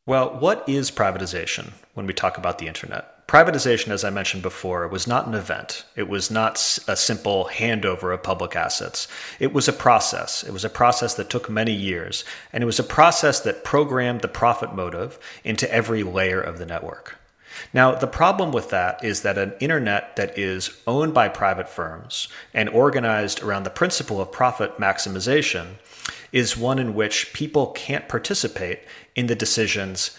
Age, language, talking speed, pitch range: 30-49, English, 175 wpm, 95-125 Hz